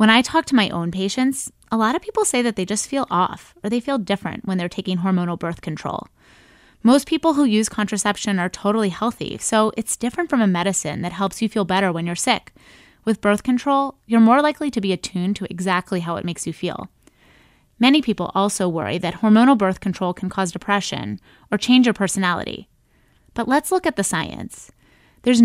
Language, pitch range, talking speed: English, 185-235 Hz, 205 wpm